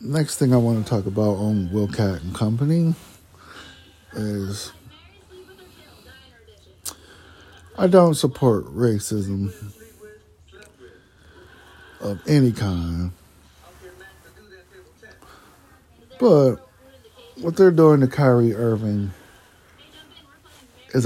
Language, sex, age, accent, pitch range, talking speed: English, male, 60-79, American, 90-125 Hz, 75 wpm